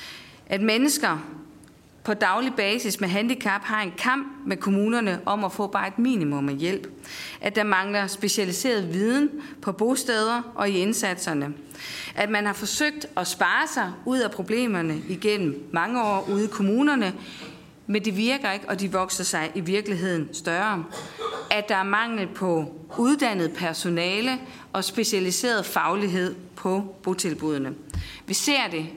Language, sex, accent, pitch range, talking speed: Danish, female, native, 175-225 Hz, 150 wpm